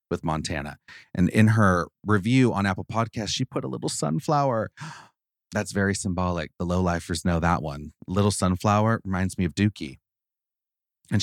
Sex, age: male, 30-49